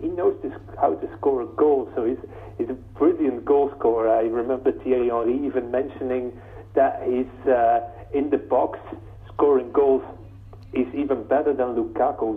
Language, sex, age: English, male, 40-59